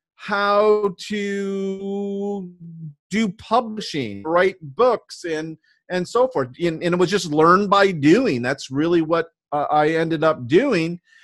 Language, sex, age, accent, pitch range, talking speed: English, male, 40-59, American, 165-250 Hz, 135 wpm